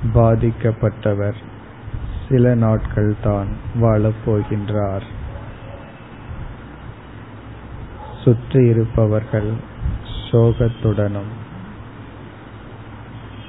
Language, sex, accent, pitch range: Tamil, male, native, 105-115 Hz